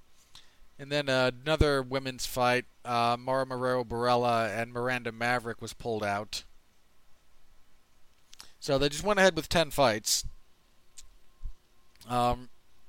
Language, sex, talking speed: English, male, 105 wpm